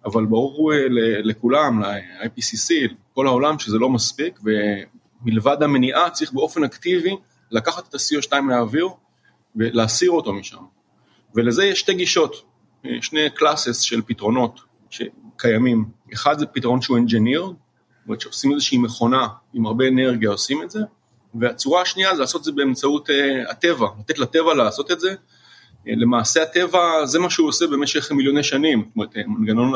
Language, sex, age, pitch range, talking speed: Hebrew, male, 30-49, 115-160 Hz, 135 wpm